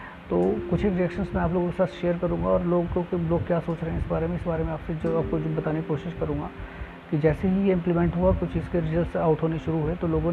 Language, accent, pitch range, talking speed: Hindi, native, 145-170 Hz, 275 wpm